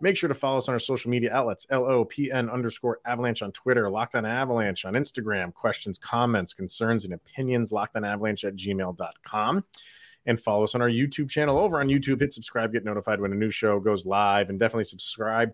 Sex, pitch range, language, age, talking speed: male, 105-135 Hz, English, 30-49, 215 wpm